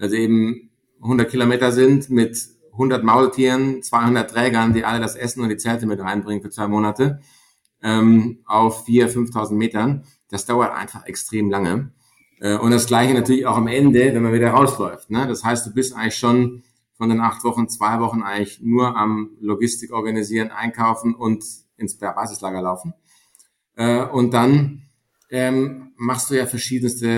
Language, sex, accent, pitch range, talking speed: German, male, German, 105-125 Hz, 165 wpm